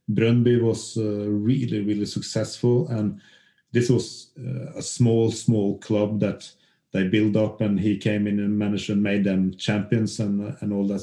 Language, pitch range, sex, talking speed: English, 105-125 Hz, male, 175 wpm